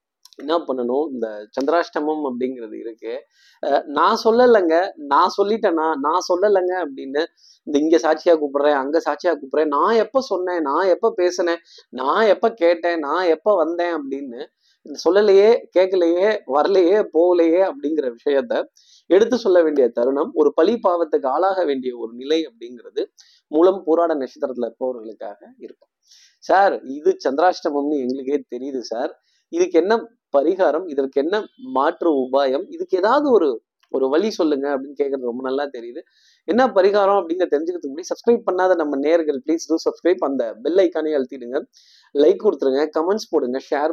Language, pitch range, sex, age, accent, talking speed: Tamil, 140-210 Hz, male, 20-39, native, 95 wpm